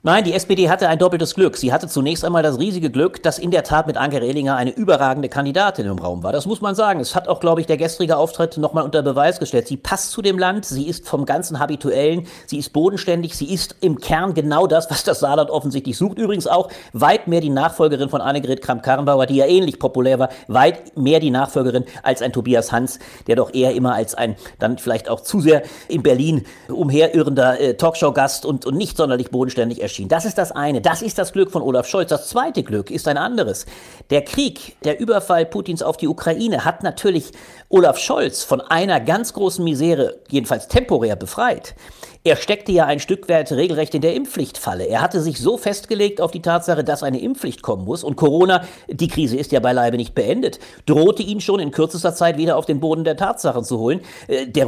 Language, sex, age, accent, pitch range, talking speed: German, male, 40-59, German, 135-180 Hz, 215 wpm